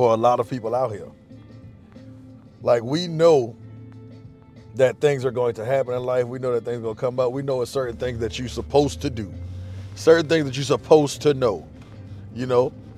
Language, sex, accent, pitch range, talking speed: English, male, American, 115-140 Hz, 210 wpm